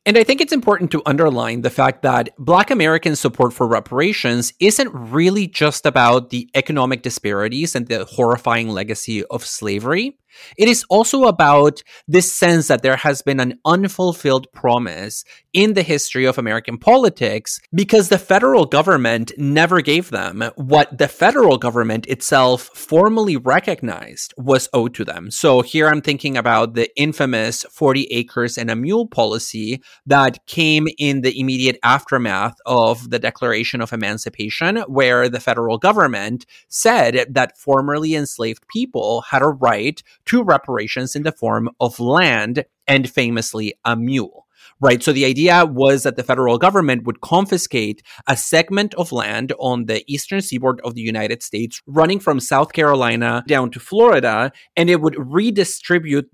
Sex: male